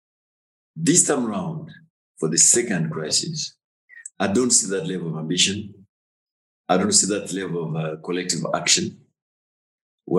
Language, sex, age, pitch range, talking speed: English, male, 50-69, 80-125 Hz, 140 wpm